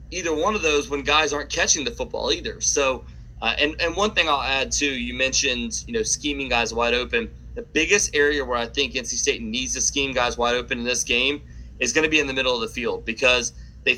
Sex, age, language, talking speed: male, 30-49, English, 245 wpm